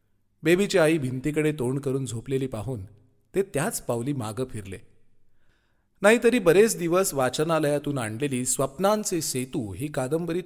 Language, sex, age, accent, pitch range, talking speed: Marathi, male, 30-49, native, 120-165 Hz, 125 wpm